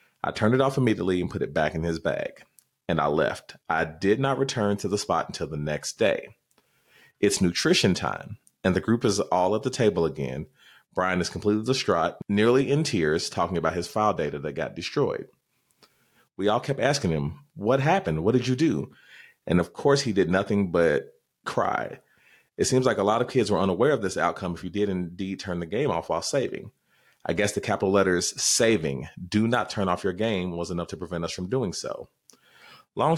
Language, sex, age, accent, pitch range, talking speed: English, male, 30-49, American, 90-125 Hz, 210 wpm